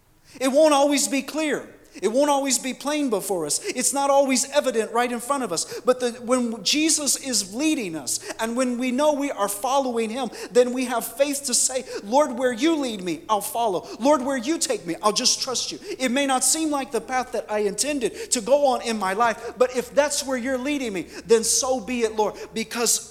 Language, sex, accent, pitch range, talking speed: English, male, American, 215-275 Hz, 225 wpm